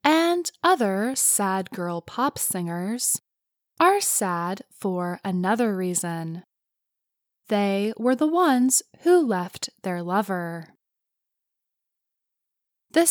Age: 10-29